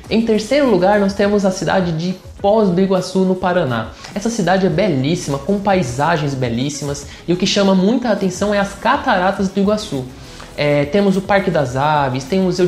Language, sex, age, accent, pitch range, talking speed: English, male, 20-39, Brazilian, 150-190 Hz, 190 wpm